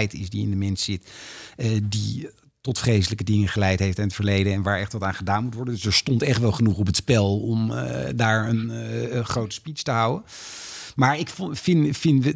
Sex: male